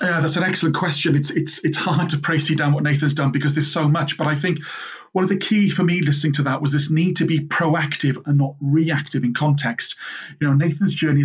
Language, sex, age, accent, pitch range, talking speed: English, male, 40-59, British, 145-175 Hz, 245 wpm